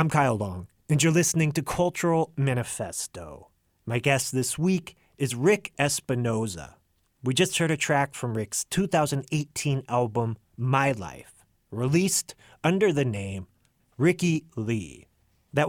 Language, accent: English, American